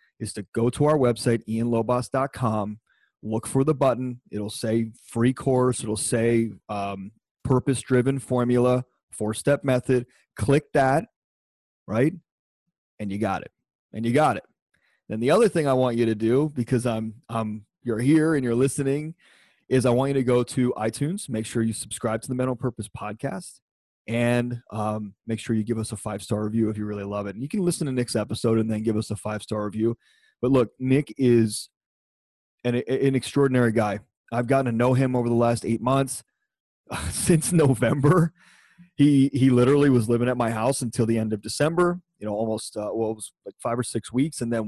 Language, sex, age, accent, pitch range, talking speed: English, male, 30-49, American, 110-135 Hz, 195 wpm